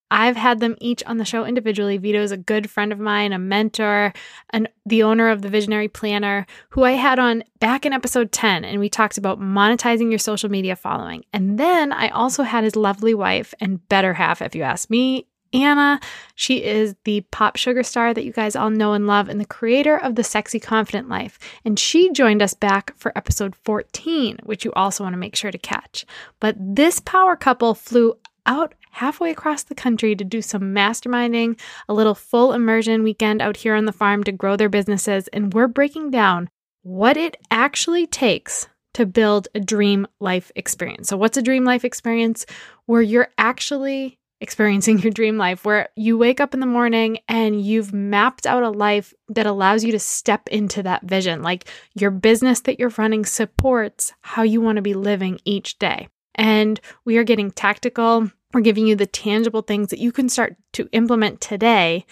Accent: American